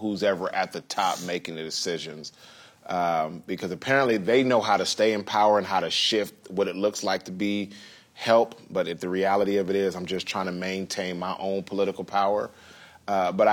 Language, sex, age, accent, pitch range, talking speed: English, male, 30-49, American, 90-110 Hz, 210 wpm